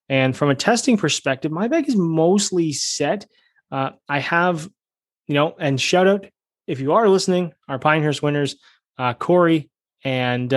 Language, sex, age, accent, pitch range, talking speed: English, male, 20-39, American, 130-160 Hz, 160 wpm